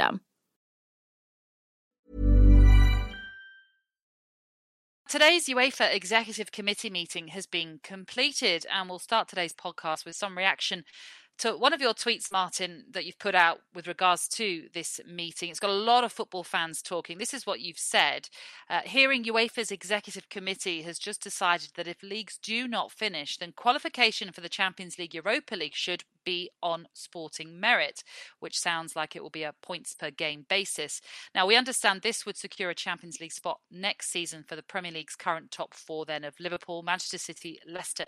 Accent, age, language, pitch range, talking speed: British, 40-59, English, 165-220 Hz, 170 wpm